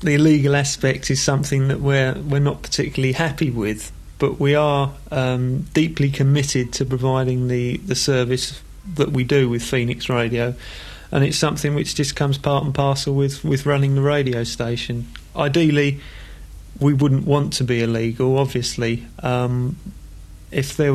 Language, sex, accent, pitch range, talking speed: English, male, British, 125-140 Hz, 160 wpm